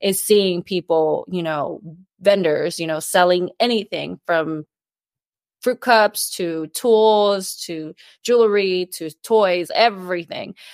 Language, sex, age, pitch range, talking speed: English, female, 20-39, 175-210 Hz, 110 wpm